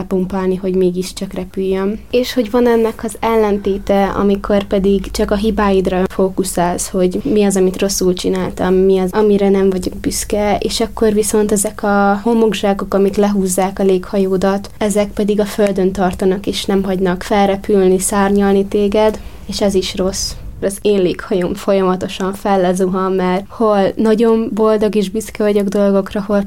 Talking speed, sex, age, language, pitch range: 150 wpm, female, 20-39, Hungarian, 190-215 Hz